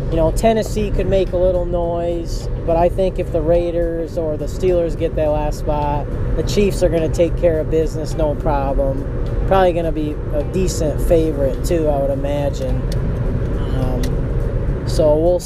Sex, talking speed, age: male, 180 wpm, 20-39